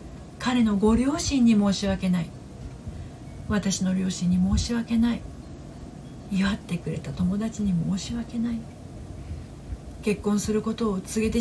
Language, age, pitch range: Japanese, 50-69, 165-230 Hz